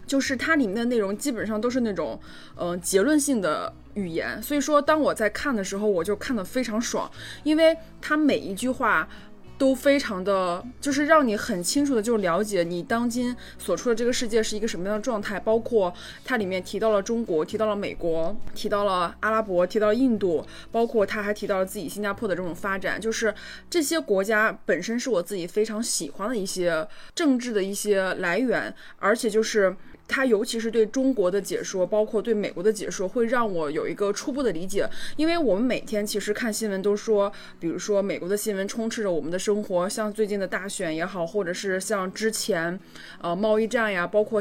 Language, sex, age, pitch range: Chinese, female, 20-39, 195-240 Hz